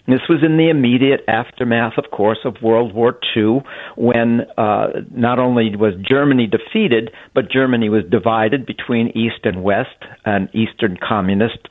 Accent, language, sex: American, English, male